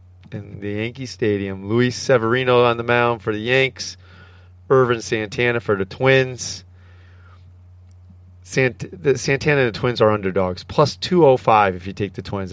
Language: English